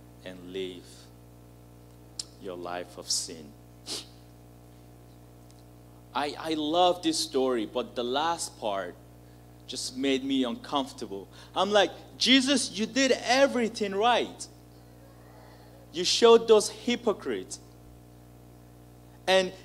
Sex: male